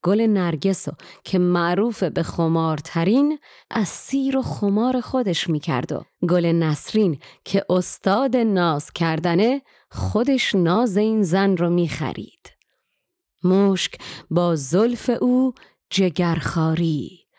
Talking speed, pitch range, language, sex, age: 105 wpm, 165-195 Hz, Persian, female, 30-49